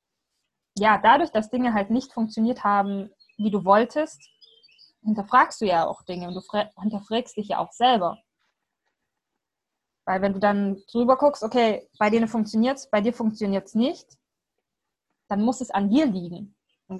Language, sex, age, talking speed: German, female, 20-39, 155 wpm